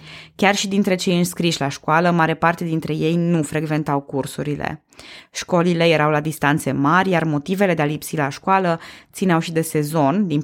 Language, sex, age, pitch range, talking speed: Romanian, female, 20-39, 150-180 Hz, 180 wpm